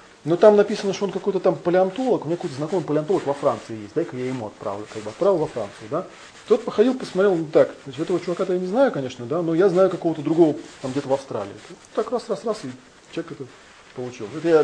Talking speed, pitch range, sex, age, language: 240 wpm, 135-190 Hz, male, 30-49, Russian